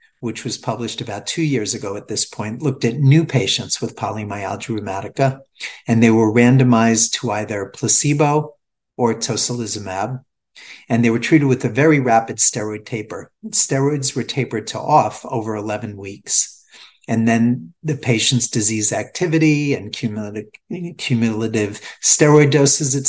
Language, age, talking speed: English, 50-69, 145 wpm